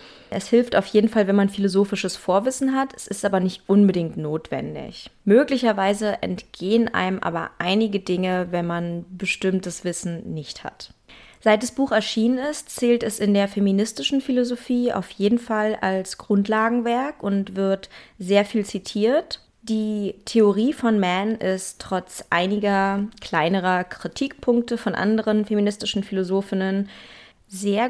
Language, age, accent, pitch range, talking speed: German, 20-39, German, 185-225 Hz, 135 wpm